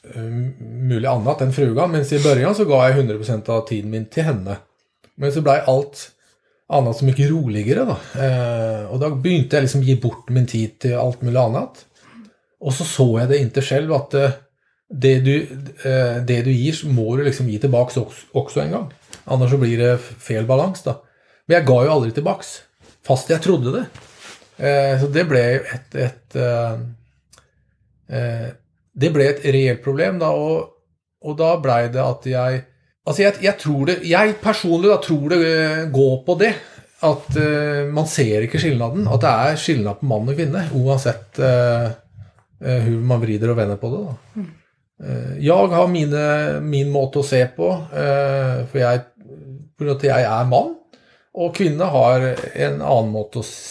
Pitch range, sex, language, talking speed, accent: 120-150 Hz, male, Swedish, 185 wpm, Norwegian